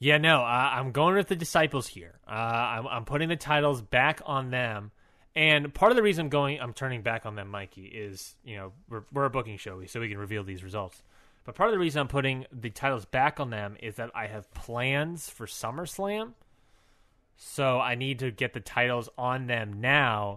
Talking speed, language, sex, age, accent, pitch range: 220 wpm, English, male, 20-39, American, 110-135 Hz